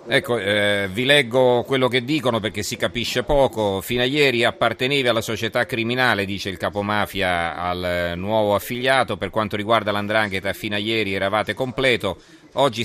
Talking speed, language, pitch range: 165 wpm, Italian, 95-120 Hz